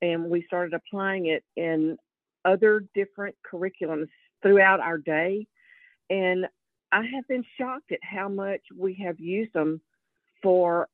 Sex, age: female, 50-69